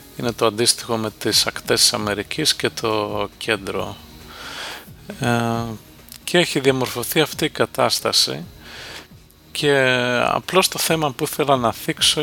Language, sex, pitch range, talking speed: English, male, 110-135 Hz, 130 wpm